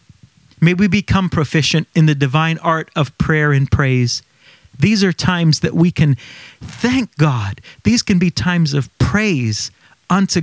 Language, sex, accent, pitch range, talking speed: English, male, American, 135-180 Hz, 155 wpm